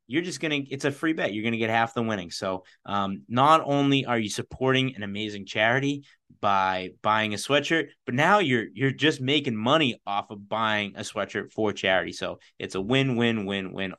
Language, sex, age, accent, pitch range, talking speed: English, male, 30-49, American, 105-125 Hz, 195 wpm